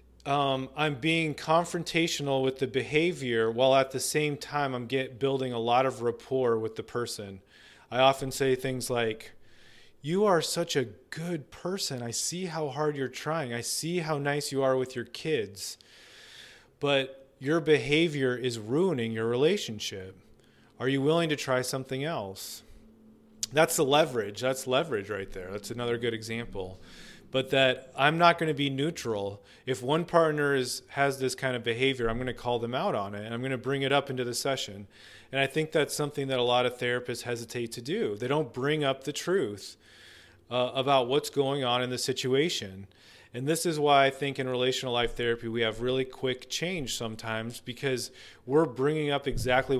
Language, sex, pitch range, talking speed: English, male, 120-145 Hz, 185 wpm